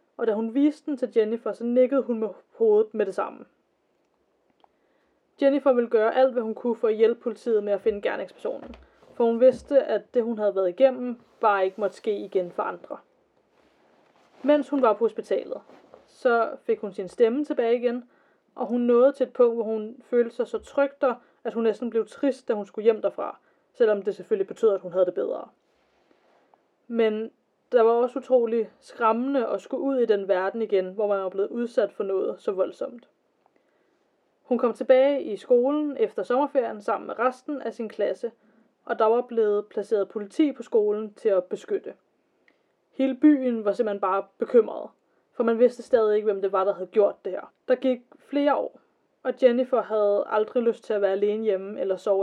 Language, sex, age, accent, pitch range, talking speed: Danish, female, 20-39, native, 215-270 Hz, 195 wpm